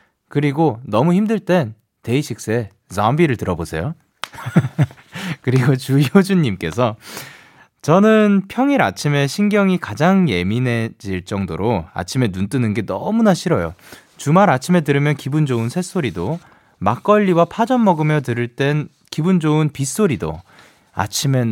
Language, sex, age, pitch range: Korean, male, 20-39, 110-175 Hz